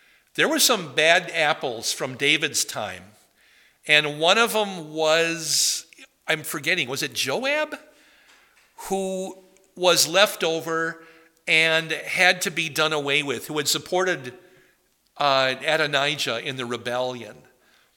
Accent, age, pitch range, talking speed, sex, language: American, 50-69, 135-180 Hz, 125 wpm, male, English